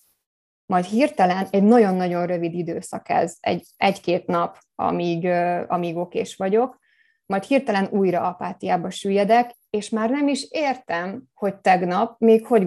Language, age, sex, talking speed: Hungarian, 20-39, female, 135 wpm